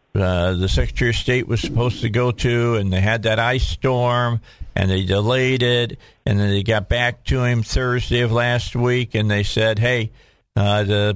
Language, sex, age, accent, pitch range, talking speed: English, male, 50-69, American, 105-120 Hz, 200 wpm